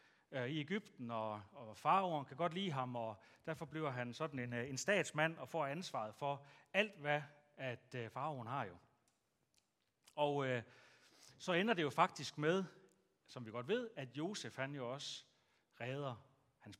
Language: Danish